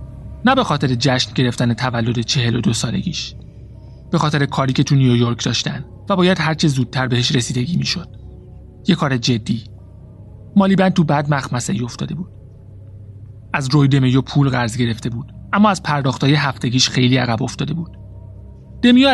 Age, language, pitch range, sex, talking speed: 30-49, Persian, 115-150 Hz, male, 155 wpm